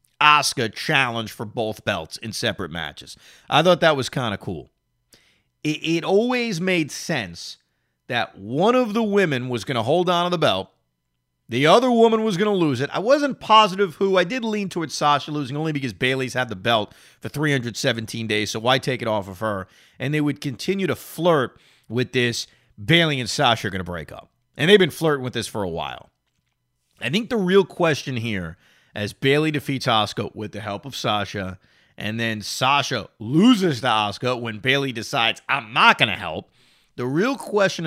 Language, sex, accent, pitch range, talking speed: English, male, American, 110-170 Hz, 195 wpm